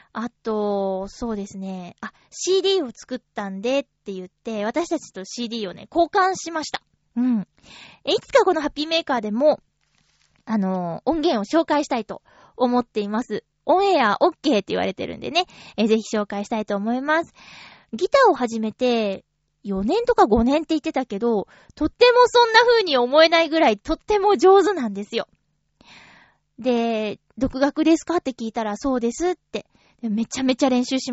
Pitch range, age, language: 215-335 Hz, 20-39, Japanese